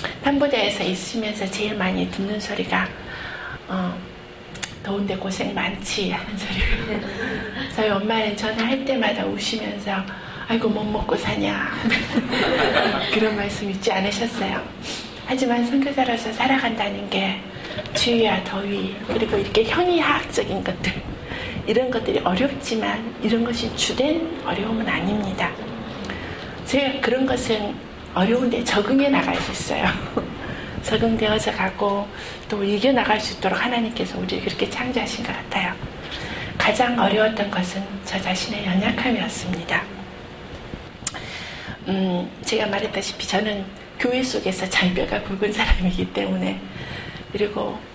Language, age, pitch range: Korean, 40-59, 195-240 Hz